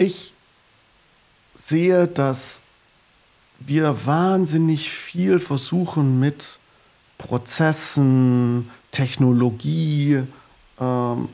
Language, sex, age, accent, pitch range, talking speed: German, male, 40-59, German, 120-155 Hz, 60 wpm